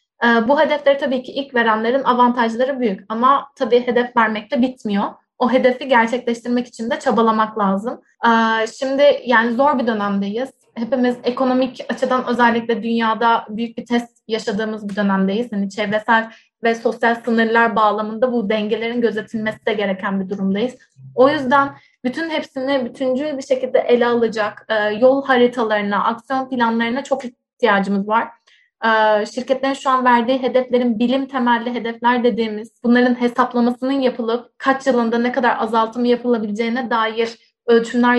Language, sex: Turkish, female